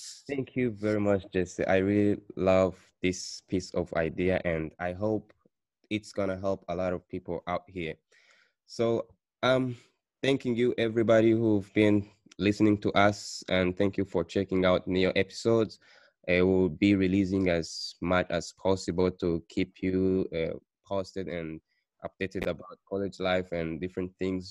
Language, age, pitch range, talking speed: English, 20-39, 90-100 Hz, 160 wpm